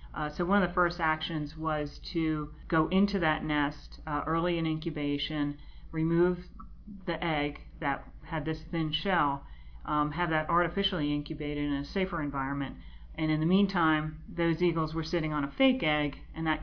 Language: English